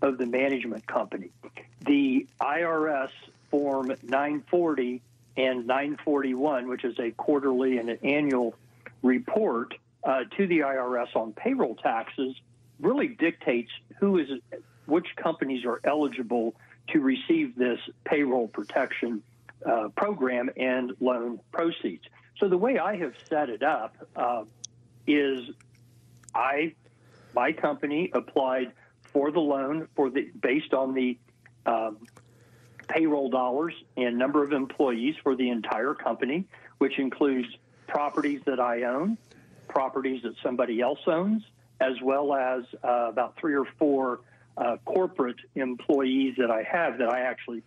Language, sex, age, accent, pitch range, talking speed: English, male, 60-79, American, 120-140 Hz, 130 wpm